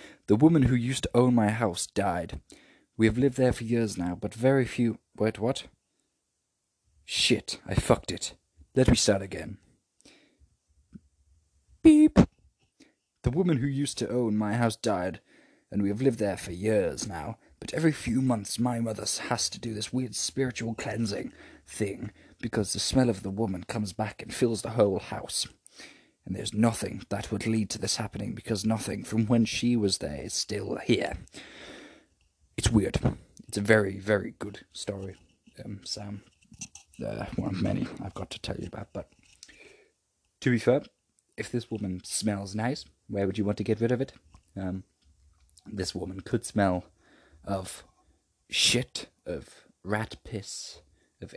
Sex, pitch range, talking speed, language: male, 95-120 Hz, 165 wpm, English